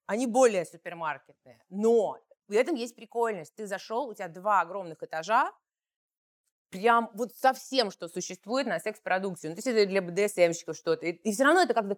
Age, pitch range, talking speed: 30-49, 180-230 Hz, 175 wpm